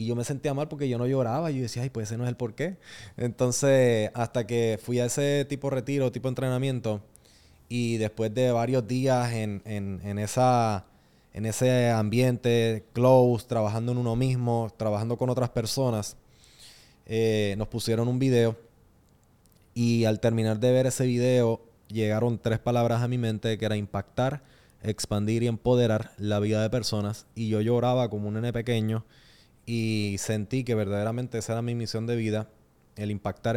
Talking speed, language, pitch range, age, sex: 180 wpm, Spanish, 105-125 Hz, 20-39, male